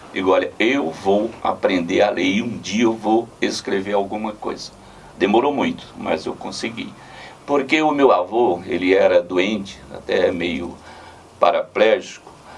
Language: Portuguese